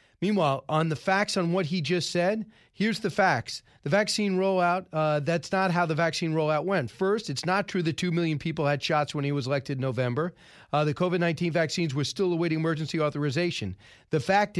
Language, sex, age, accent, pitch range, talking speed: English, male, 40-59, American, 155-190 Hz, 205 wpm